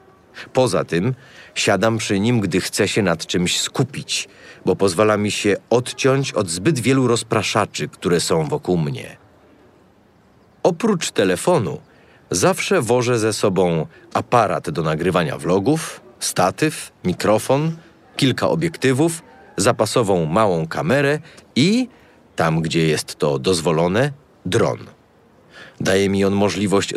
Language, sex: Polish, male